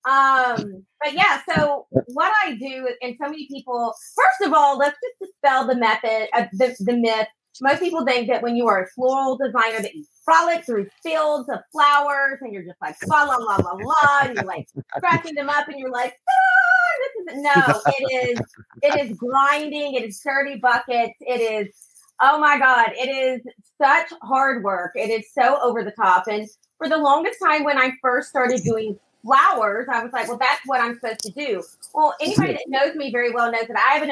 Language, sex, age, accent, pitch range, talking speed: English, female, 30-49, American, 245-315 Hz, 215 wpm